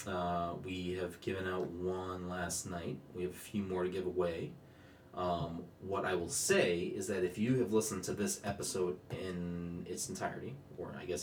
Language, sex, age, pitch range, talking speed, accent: English, male, 30-49, 90-115 Hz, 190 wpm, American